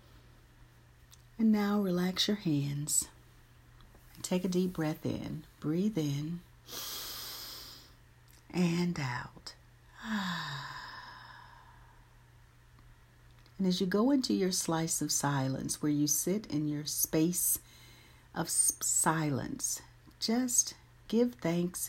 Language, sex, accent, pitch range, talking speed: English, female, American, 135-185 Hz, 95 wpm